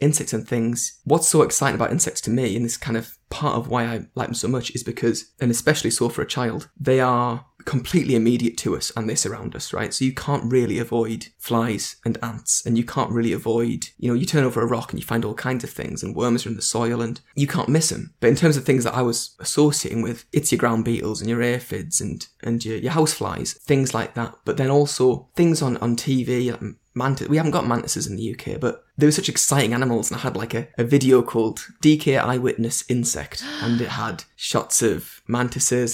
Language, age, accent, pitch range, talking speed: English, 20-39, British, 115-140 Hz, 240 wpm